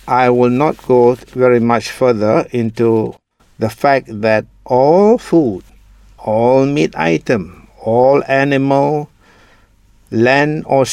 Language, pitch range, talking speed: English, 115-145 Hz, 110 wpm